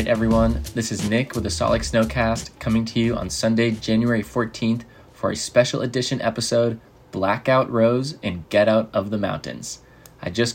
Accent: American